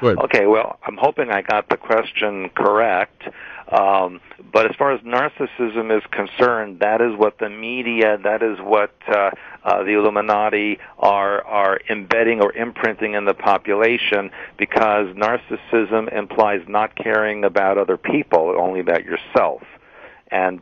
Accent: American